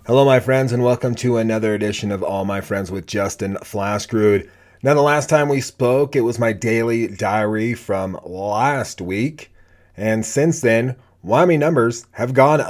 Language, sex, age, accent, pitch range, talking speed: English, male, 30-49, American, 100-125 Hz, 170 wpm